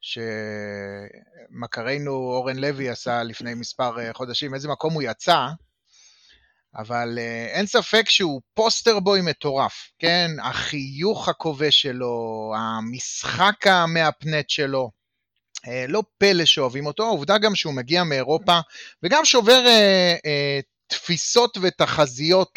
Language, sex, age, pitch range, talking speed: Hebrew, male, 30-49, 130-185 Hz, 105 wpm